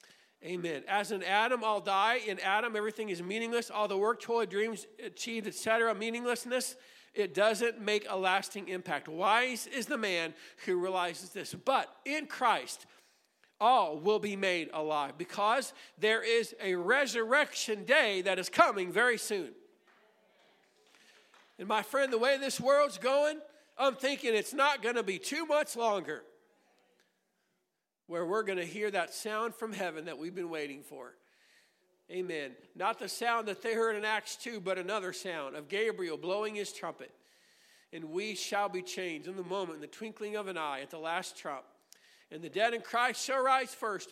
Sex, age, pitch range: male, 50-69, 180-235 Hz